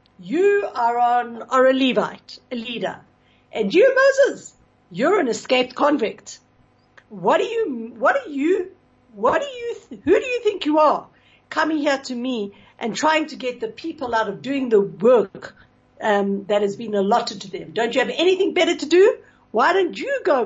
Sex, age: female, 60-79